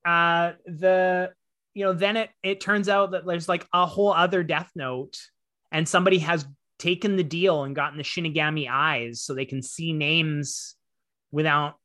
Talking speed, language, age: 170 wpm, English, 30-49